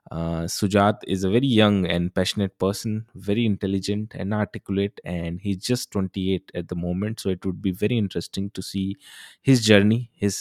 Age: 20-39